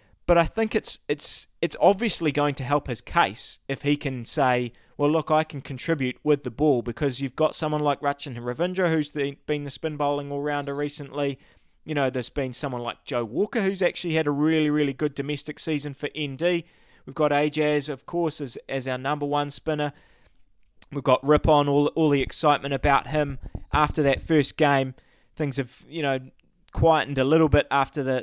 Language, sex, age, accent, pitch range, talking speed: English, male, 20-39, Australian, 130-155 Hz, 195 wpm